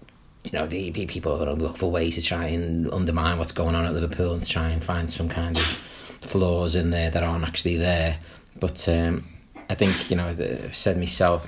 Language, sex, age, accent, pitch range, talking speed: English, male, 30-49, British, 80-90 Hz, 225 wpm